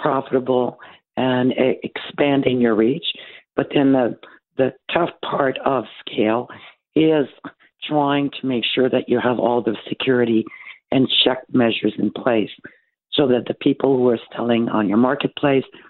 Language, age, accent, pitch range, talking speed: English, 60-79, American, 120-140 Hz, 145 wpm